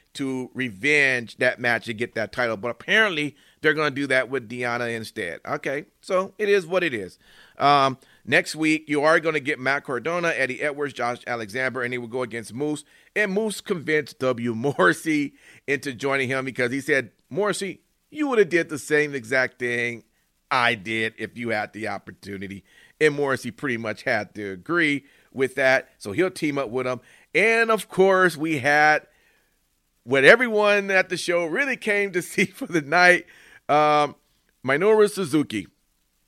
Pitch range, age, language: 120-165 Hz, 40-59, English